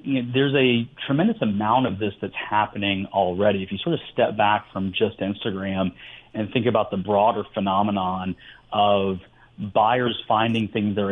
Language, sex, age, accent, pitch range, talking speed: English, male, 30-49, American, 95-115 Hz, 155 wpm